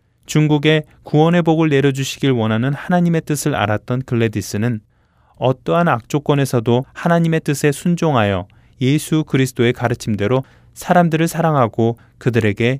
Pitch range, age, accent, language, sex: 110-150 Hz, 20-39, native, Korean, male